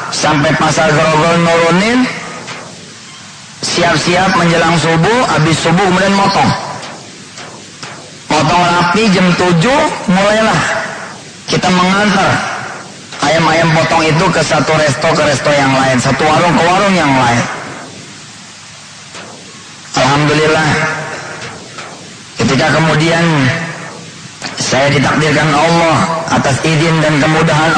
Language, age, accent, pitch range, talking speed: English, 30-49, Indonesian, 155-195 Hz, 95 wpm